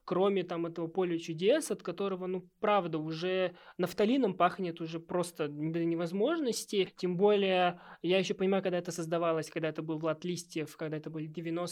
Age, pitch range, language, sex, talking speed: 20-39, 170-215 Hz, Russian, male, 165 wpm